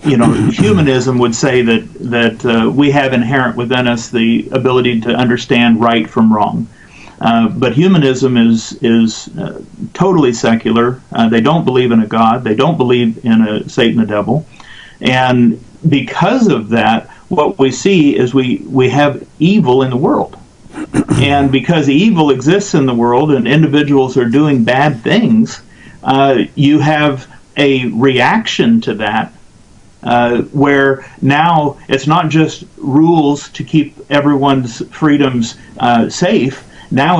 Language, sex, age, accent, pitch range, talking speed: English, male, 50-69, American, 120-150 Hz, 150 wpm